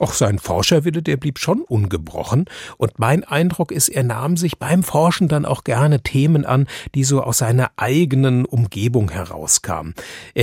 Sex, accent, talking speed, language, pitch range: male, German, 165 wpm, German, 110-155 Hz